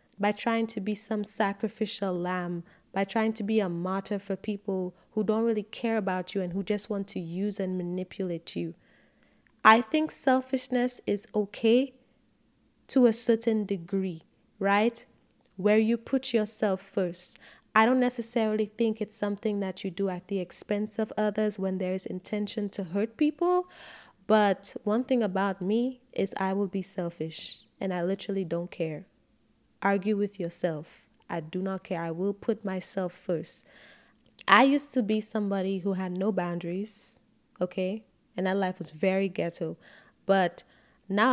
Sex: female